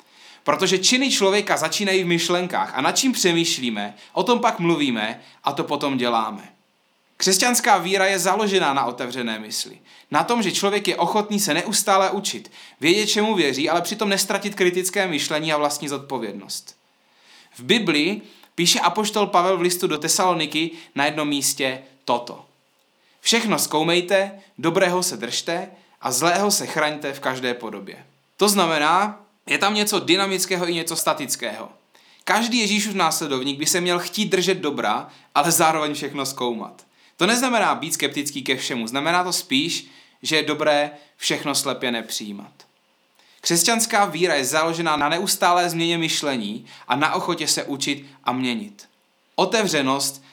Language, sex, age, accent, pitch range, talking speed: Czech, male, 20-39, native, 140-190 Hz, 145 wpm